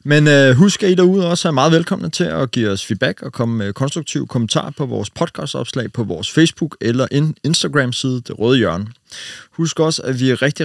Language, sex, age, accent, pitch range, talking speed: Danish, male, 30-49, native, 110-150 Hz, 205 wpm